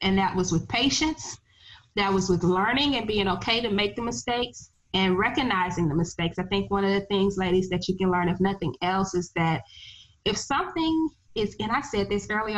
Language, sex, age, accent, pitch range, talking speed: English, female, 20-39, American, 185-230 Hz, 210 wpm